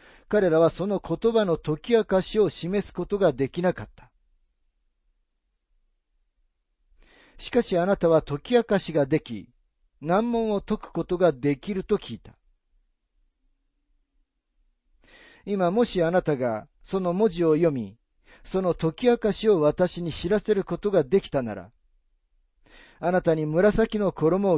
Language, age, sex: Japanese, 40-59, male